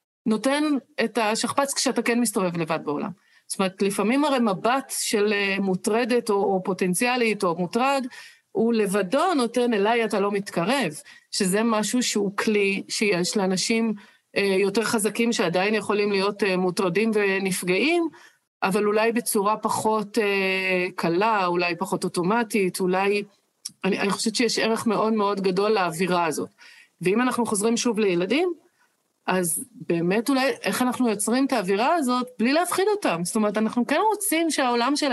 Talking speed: 140 wpm